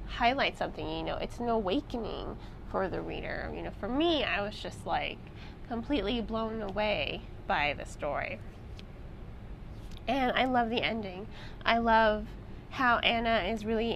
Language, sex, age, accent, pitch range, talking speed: English, female, 20-39, American, 220-265 Hz, 150 wpm